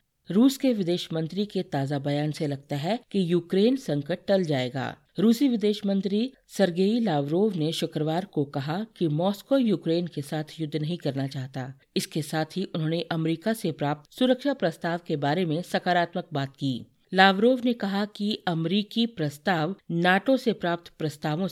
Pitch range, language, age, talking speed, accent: 155-200 Hz, Hindi, 50-69, 160 wpm, native